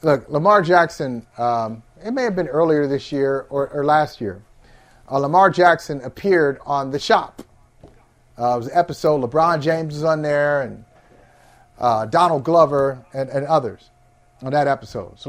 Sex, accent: male, American